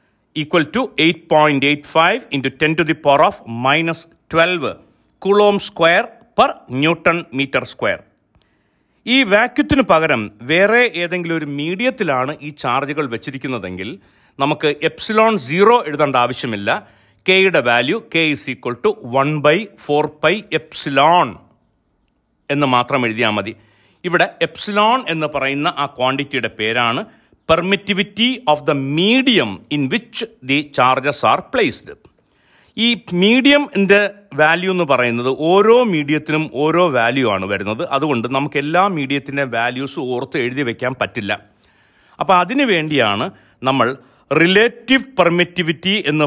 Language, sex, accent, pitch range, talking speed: Malayalam, male, native, 130-185 Hz, 125 wpm